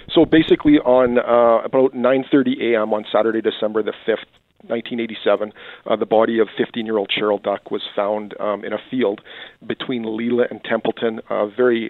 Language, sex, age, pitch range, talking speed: English, male, 40-59, 110-120 Hz, 160 wpm